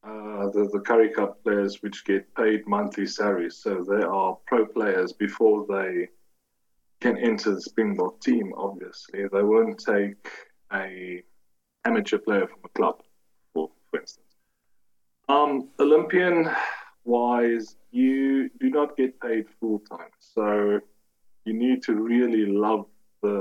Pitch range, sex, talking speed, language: 105-140 Hz, male, 130 wpm, English